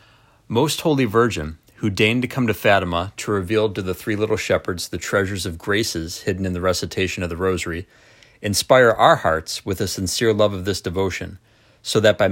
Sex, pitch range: male, 90-115 Hz